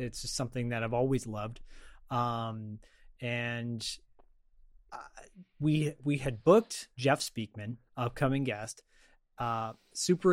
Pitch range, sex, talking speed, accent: 120-150 Hz, male, 110 wpm, American